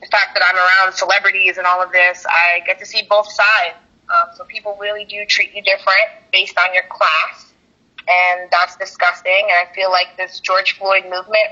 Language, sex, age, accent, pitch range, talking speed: English, female, 20-39, American, 185-260 Hz, 205 wpm